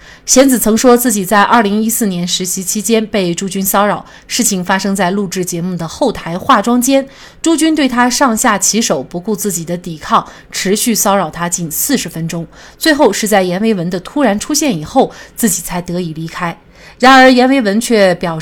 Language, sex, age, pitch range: Chinese, female, 30-49, 175-235 Hz